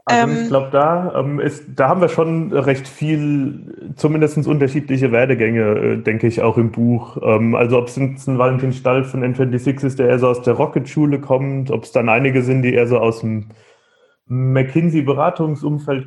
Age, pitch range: 30-49, 125-140 Hz